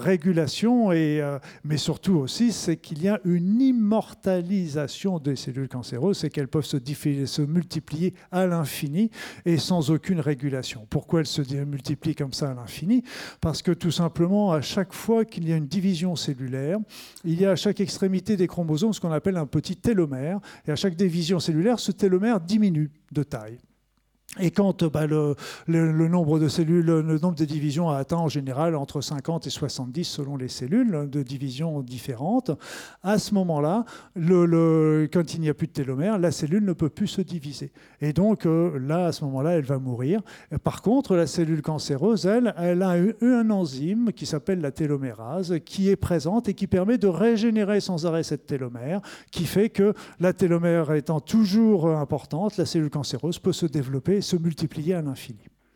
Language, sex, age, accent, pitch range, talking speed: French, male, 50-69, French, 150-190 Hz, 190 wpm